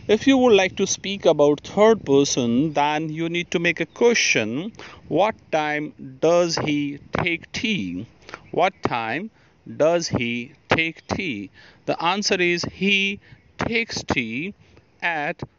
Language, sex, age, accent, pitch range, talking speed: English, male, 50-69, Indian, 145-190 Hz, 135 wpm